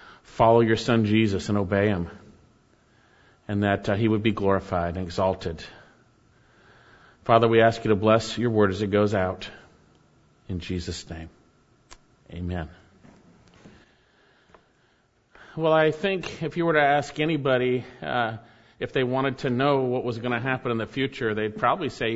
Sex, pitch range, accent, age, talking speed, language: male, 115-155 Hz, American, 40-59, 155 wpm, English